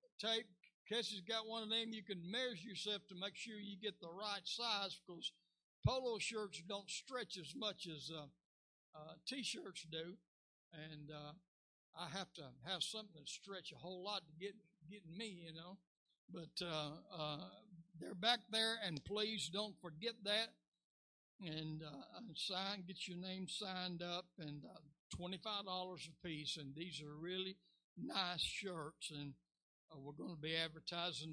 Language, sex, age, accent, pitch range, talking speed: English, male, 60-79, American, 155-205 Hz, 160 wpm